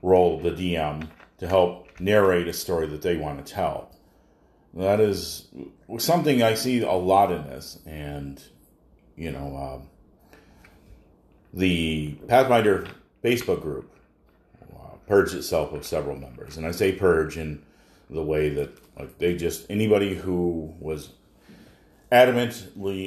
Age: 40-59